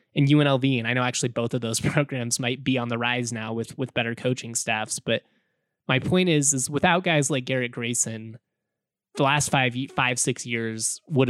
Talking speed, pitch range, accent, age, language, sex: 200 wpm, 120-155 Hz, American, 20-39, English, male